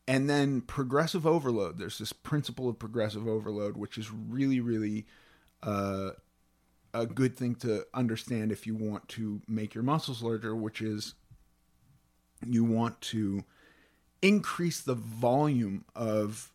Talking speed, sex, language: 135 wpm, male, English